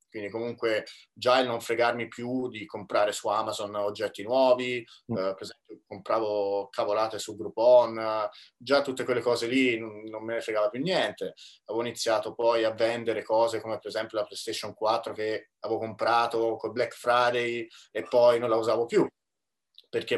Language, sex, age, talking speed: Italian, male, 20-39, 165 wpm